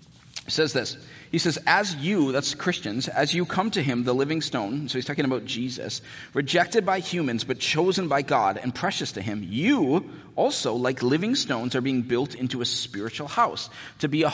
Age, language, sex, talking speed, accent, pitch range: 30-49, English, male, 200 wpm, American, 125-175 Hz